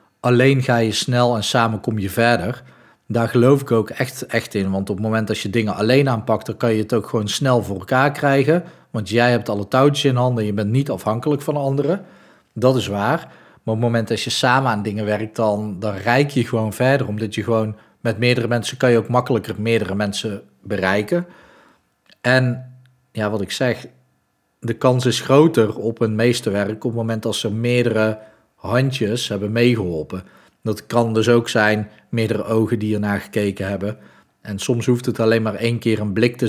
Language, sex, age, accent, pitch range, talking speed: Dutch, male, 40-59, Dutch, 105-120 Hz, 200 wpm